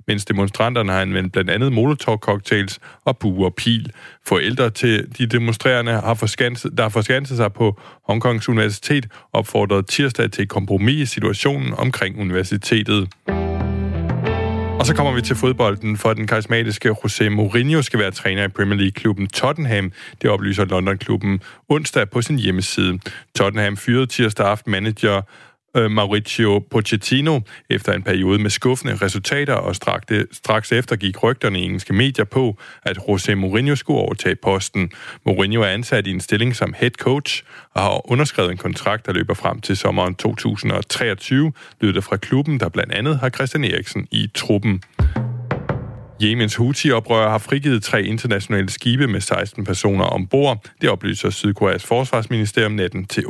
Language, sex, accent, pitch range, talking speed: Danish, male, native, 100-125 Hz, 160 wpm